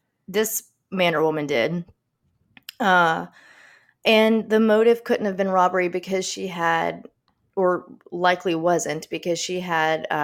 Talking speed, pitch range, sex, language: 135 wpm, 160-185 Hz, female, English